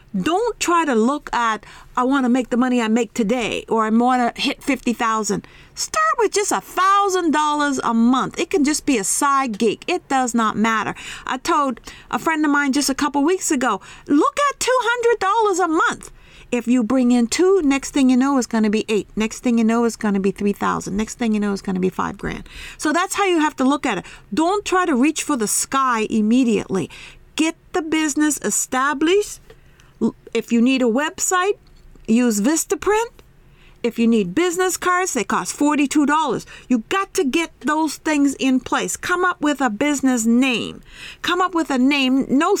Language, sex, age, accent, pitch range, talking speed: English, female, 50-69, American, 235-325 Hz, 200 wpm